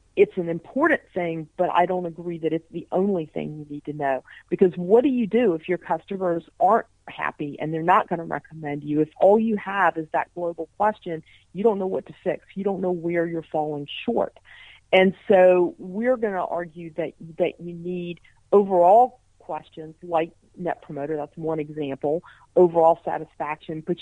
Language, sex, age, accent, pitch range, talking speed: English, female, 40-59, American, 160-190 Hz, 190 wpm